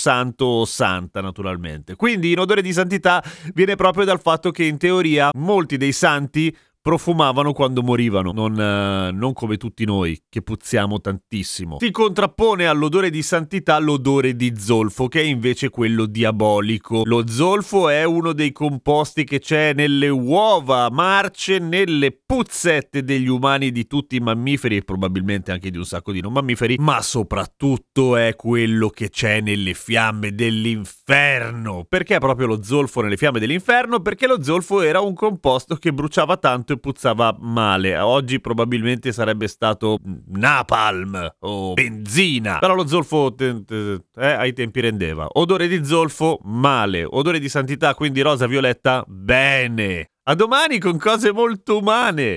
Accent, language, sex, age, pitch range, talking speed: native, Italian, male, 30-49, 110-165 Hz, 150 wpm